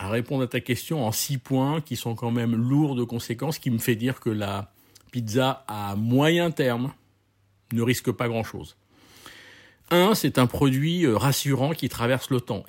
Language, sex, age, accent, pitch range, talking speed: French, male, 50-69, French, 100-130 Hz, 185 wpm